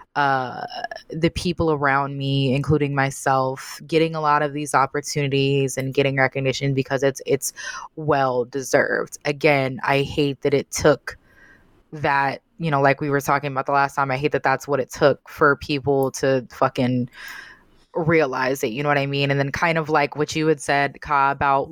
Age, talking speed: 20-39, 185 wpm